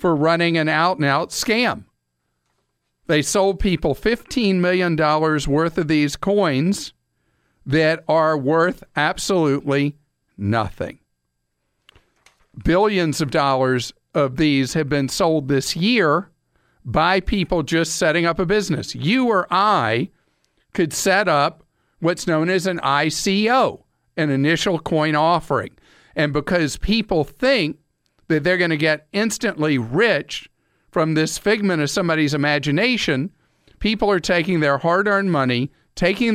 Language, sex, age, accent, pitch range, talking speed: English, male, 50-69, American, 145-190 Hz, 130 wpm